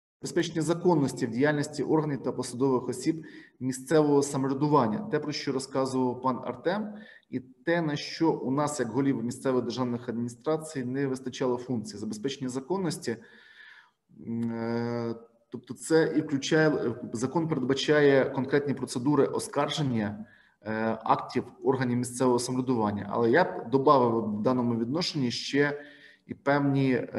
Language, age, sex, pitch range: Ukrainian, 20-39, male, 120-145 Hz